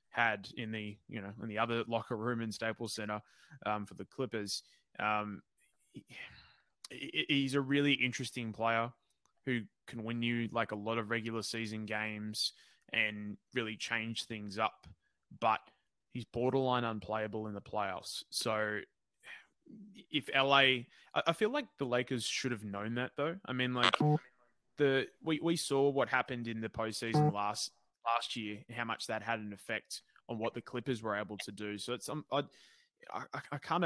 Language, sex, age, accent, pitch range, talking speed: English, male, 20-39, Australian, 110-130 Hz, 180 wpm